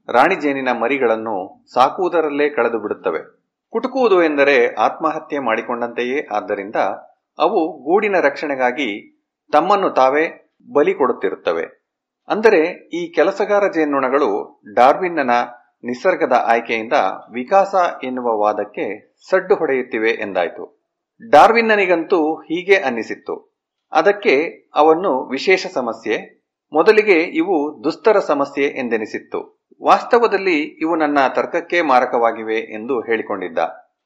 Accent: native